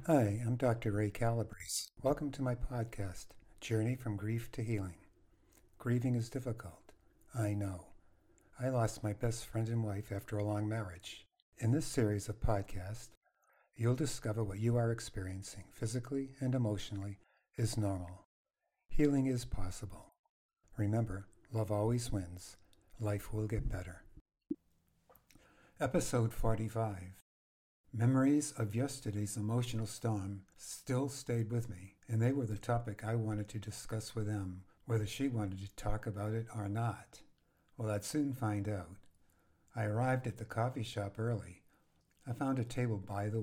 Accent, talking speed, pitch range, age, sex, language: American, 145 wpm, 100-120 Hz, 60-79, male, English